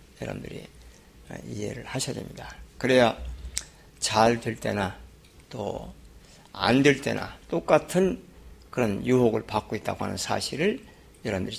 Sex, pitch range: male, 105-135 Hz